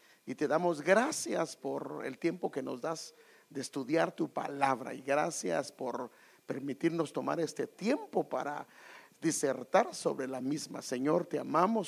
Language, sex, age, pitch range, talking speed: English, male, 50-69, 135-195 Hz, 145 wpm